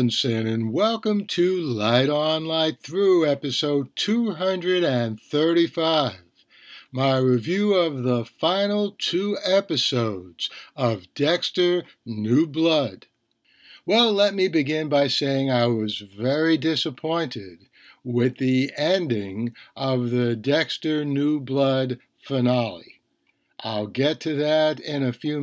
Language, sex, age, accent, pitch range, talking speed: English, male, 60-79, American, 125-160 Hz, 110 wpm